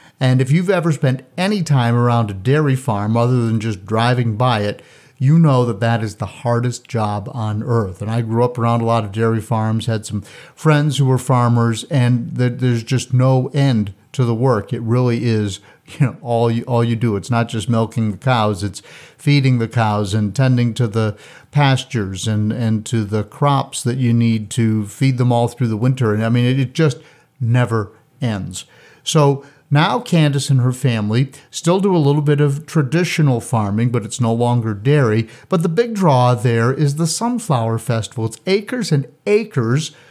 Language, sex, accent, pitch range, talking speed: English, male, American, 115-145 Hz, 195 wpm